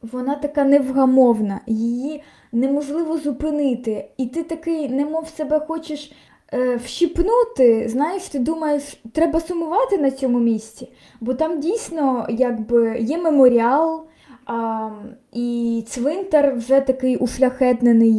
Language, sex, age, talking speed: Ukrainian, female, 20-39, 110 wpm